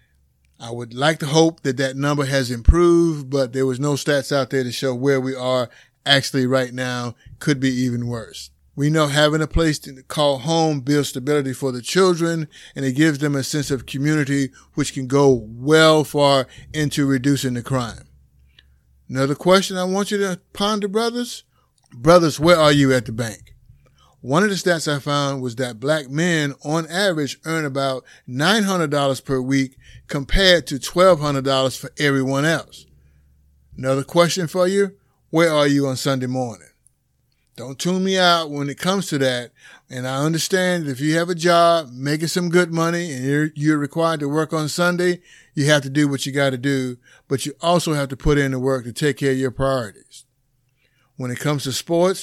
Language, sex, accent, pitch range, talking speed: English, male, American, 130-160 Hz, 190 wpm